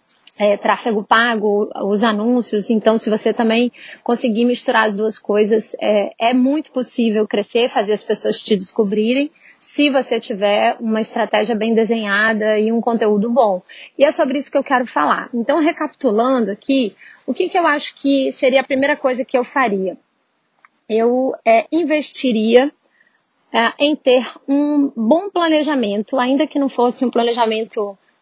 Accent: Brazilian